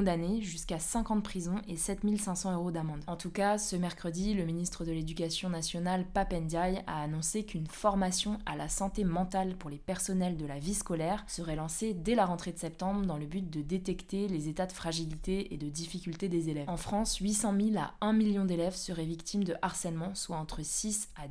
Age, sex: 20-39, female